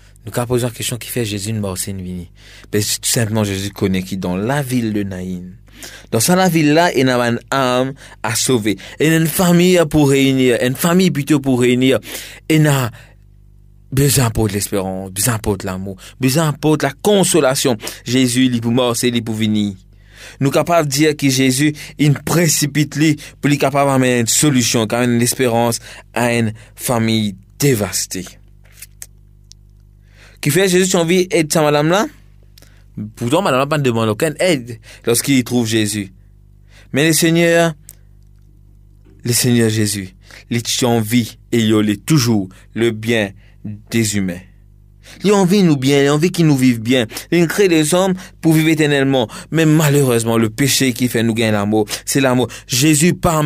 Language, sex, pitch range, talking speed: French, male, 105-145 Hz, 175 wpm